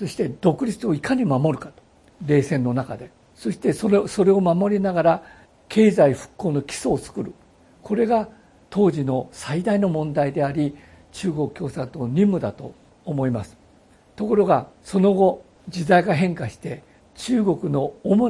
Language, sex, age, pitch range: Japanese, male, 60-79, 140-205 Hz